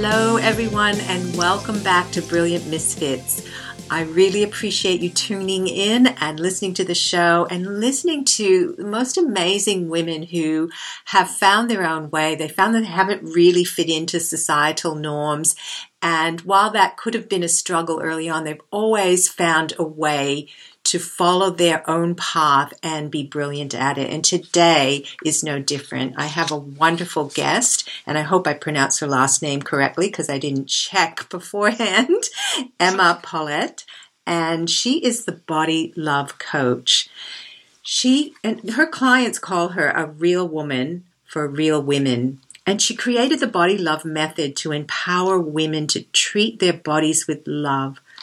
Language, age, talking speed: English, 50-69, 160 wpm